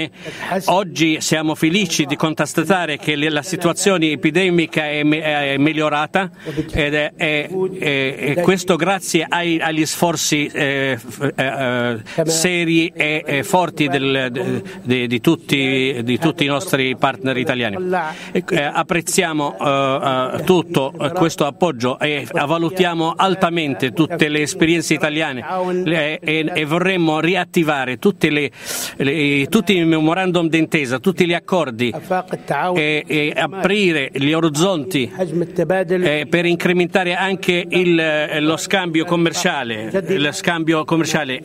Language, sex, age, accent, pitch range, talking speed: Italian, male, 50-69, native, 150-175 Hz, 95 wpm